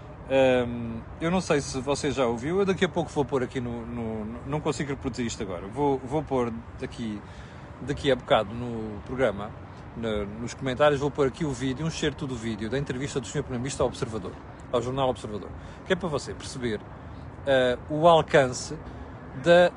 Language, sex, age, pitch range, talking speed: Portuguese, male, 40-59, 125-165 Hz, 190 wpm